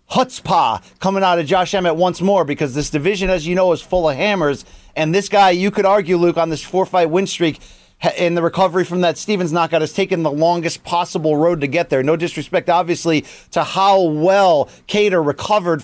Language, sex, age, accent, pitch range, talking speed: English, male, 30-49, American, 155-195 Hz, 205 wpm